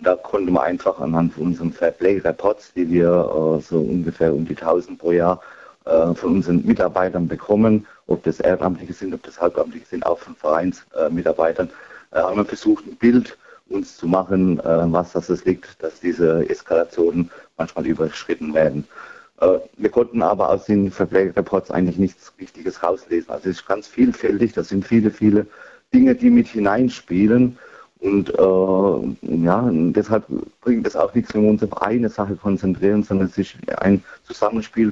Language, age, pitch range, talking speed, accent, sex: German, 50-69, 85-105 Hz, 170 wpm, German, male